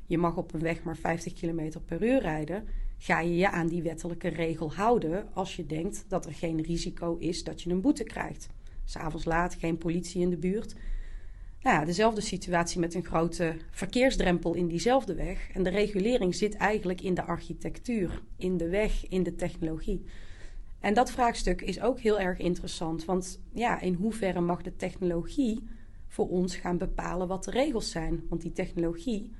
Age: 30-49